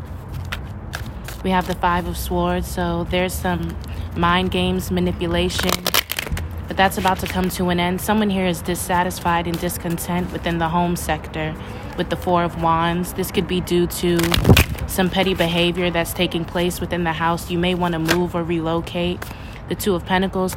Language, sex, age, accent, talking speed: English, female, 20-39, American, 170 wpm